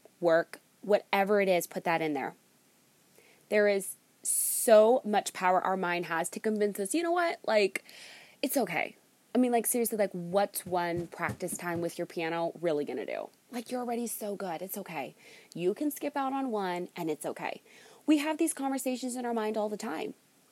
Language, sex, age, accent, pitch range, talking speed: English, female, 20-39, American, 190-270 Hz, 195 wpm